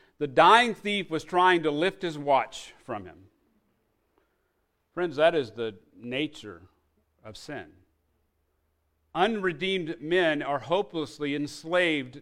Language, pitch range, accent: English, 150-210 Hz, American